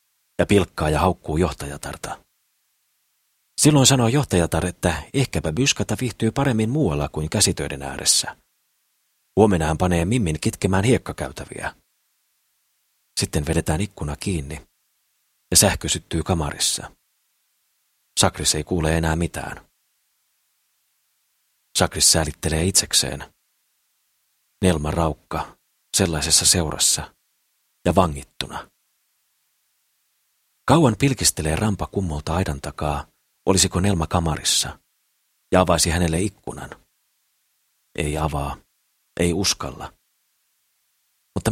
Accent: native